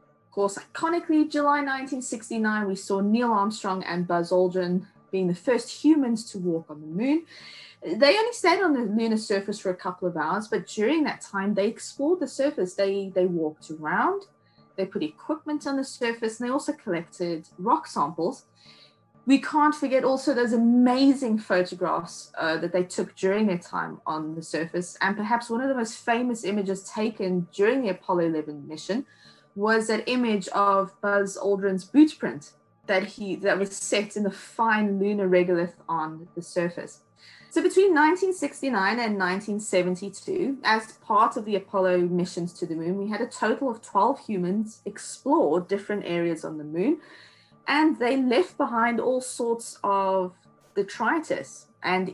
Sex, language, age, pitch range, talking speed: female, English, 20-39, 185-260 Hz, 165 wpm